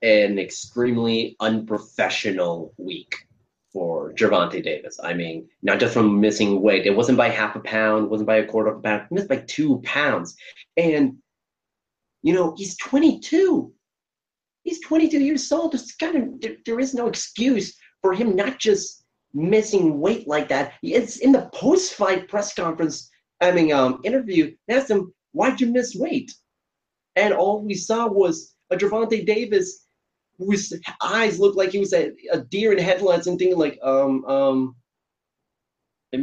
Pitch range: 135-215 Hz